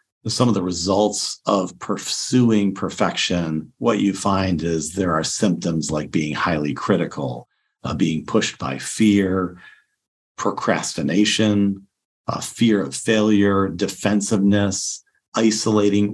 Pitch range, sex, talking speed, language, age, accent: 90-105 Hz, male, 110 wpm, English, 50-69, American